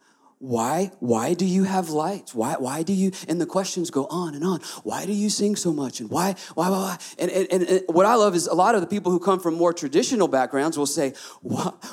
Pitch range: 225-325 Hz